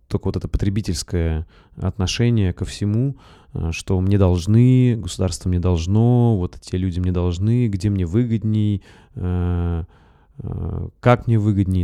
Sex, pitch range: male, 85-105 Hz